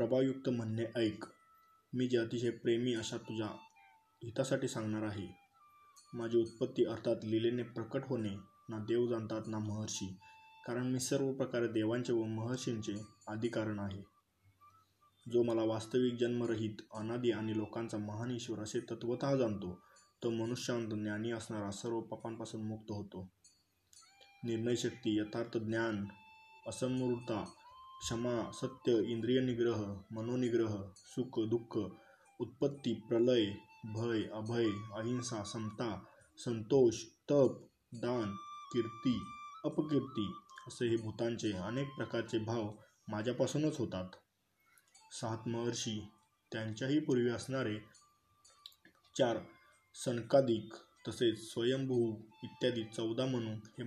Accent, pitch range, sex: native, 110-125 Hz, male